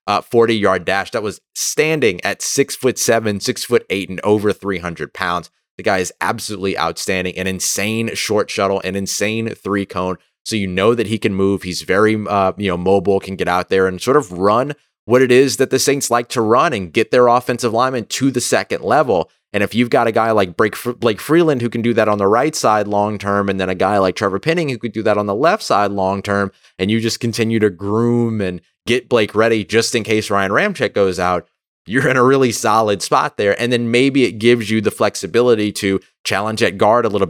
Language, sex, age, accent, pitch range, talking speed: English, male, 30-49, American, 95-115 Hz, 235 wpm